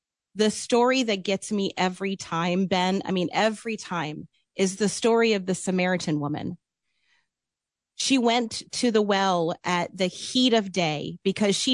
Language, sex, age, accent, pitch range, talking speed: English, female, 40-59, American, 175-250 Hz, 160 wpm